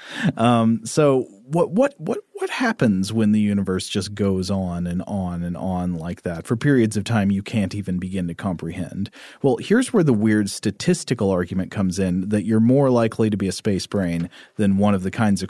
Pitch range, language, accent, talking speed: 95-120 Hz, English, American, 205 wpm